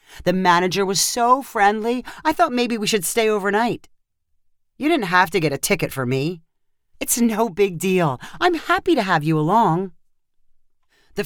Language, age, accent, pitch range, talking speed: English, 40-59, American, 155-225 Hz, 170 wpm